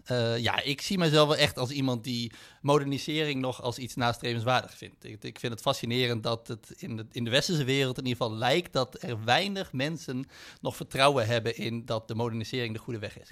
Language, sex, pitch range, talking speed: Dutch, male, 110-130 Hz, 215 wpm